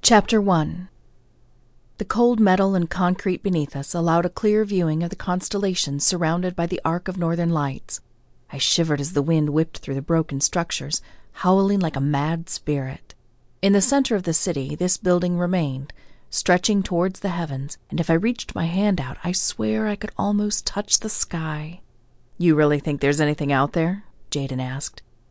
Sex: female